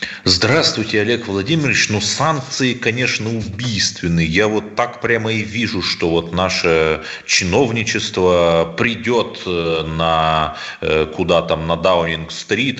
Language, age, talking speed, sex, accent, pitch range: Russian, 30-49, 110 wpm, male, native, 90-135 Hz